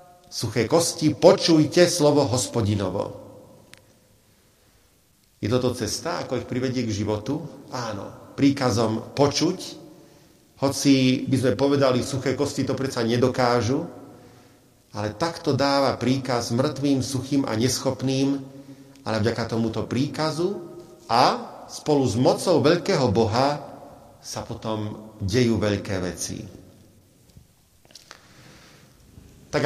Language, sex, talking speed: Slovak, male, 100 wpm